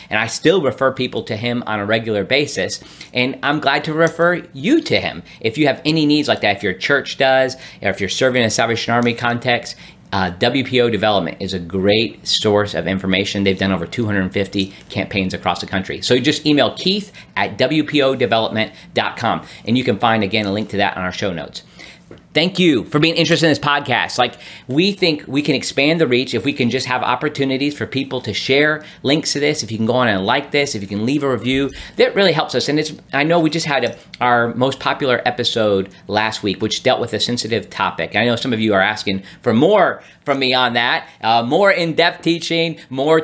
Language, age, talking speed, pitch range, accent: English, 40-59, 225 wpm, 110-155 Hz, American